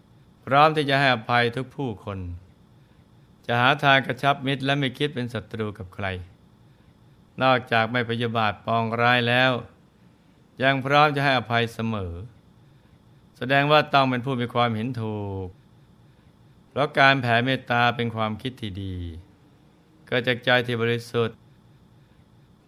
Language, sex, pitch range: Thai, male, 110-135 Hz